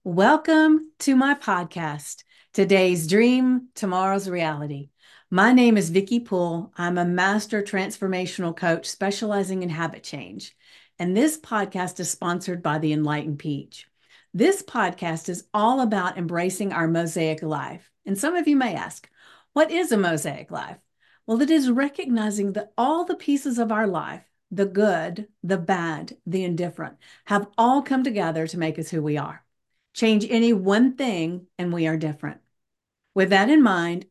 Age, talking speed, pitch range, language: 50-69, 160 wpm, 175-220 Hz, English